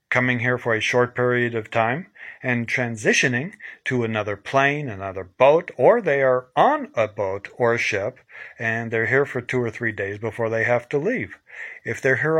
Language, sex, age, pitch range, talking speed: English, male, 40-59, 120-150 Hz, 195 wpm